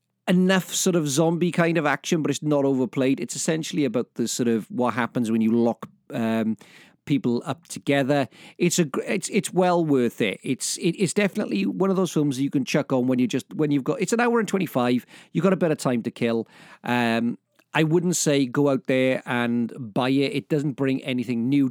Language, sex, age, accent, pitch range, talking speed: English, male, 40-59, British, 125-150 Hz, 220 wpm